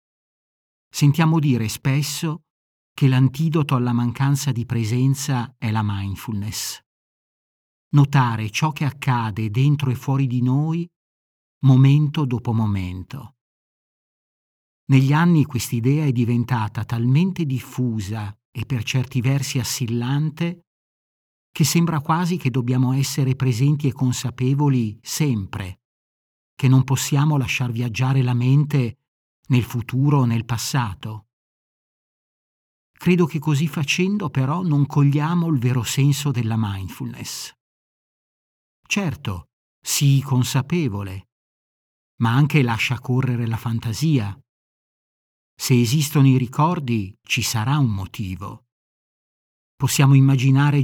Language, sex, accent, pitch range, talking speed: Italian, male, native, 115-145 Hz, 105 wpm